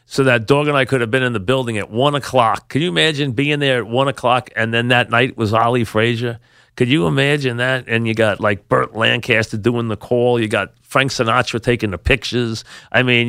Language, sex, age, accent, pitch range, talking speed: English, male, 40-59, American, 115-140 Hz, 230 wpm